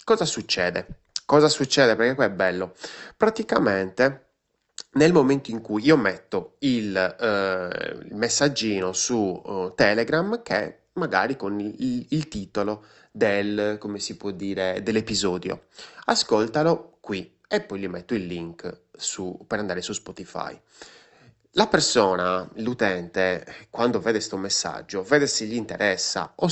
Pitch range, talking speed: 95-135 Hz, 130 wpm